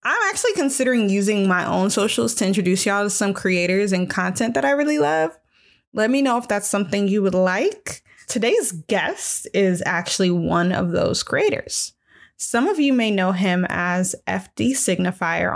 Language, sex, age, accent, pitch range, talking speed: English, female, 20-39, American, 180-240 Hz, 175 wpm